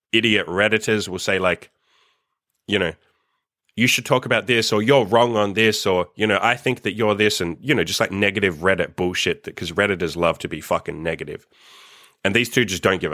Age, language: 20-39, English